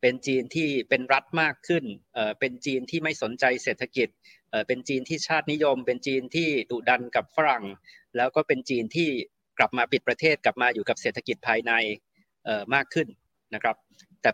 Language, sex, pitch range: Thai, male, 125-160 Hz